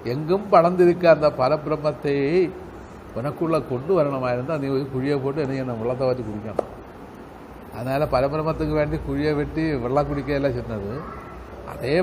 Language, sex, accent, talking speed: Tamil, male, native, 120 wpm